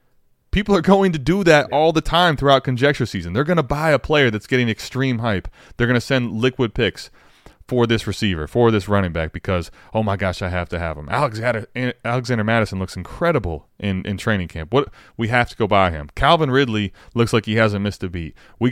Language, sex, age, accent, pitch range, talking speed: English, male, 30-49, American, 95-135 Hz, 225 wpm